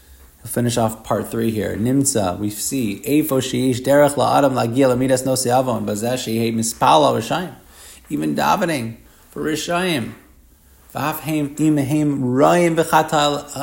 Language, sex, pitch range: English, male, 115-150 Hz